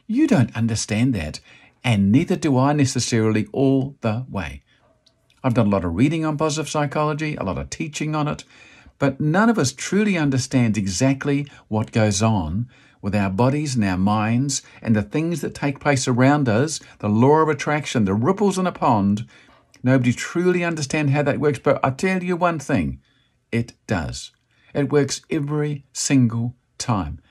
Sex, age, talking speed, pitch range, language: male, 50-69, 175 wpm, 105-145 Hz, English